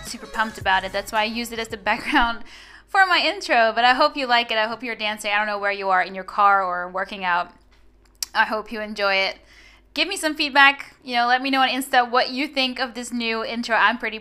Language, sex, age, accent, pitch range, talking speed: English, female, 10-29, American, 210-265 Hz, 260 wpm